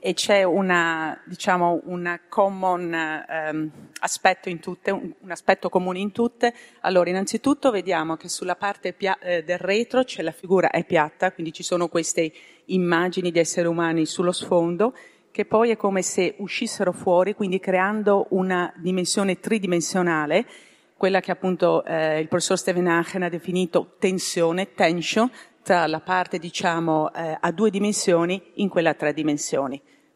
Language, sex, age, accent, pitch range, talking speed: Italian, female, 40-59, native, 170-200 Hz, 155 wpm